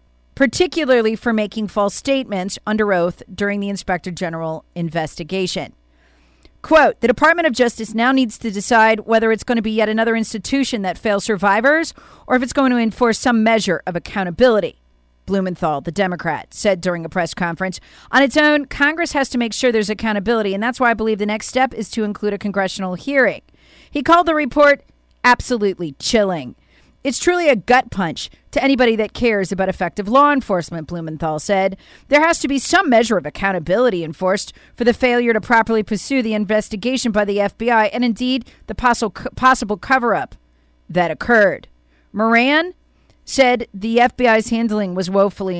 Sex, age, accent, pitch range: female, 40-59, American, 190-250 Hz